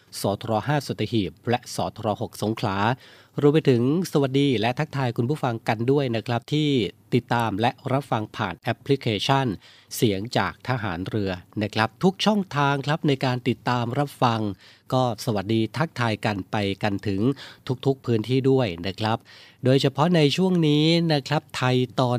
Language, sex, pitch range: Thai, male, 110-135 Hz